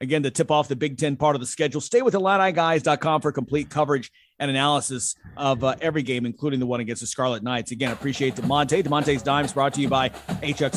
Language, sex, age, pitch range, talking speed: English, male, 40-59, 150-225 Hz, 225 wpm